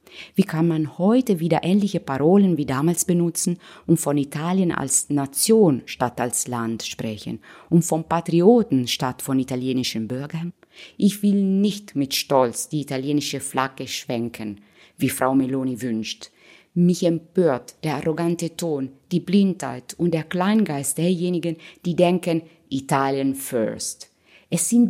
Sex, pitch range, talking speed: female, 135-175 Hz, 135 wpm